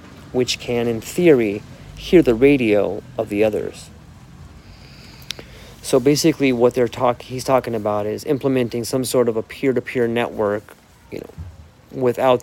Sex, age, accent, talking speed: male, 30-49, American, 140 wpm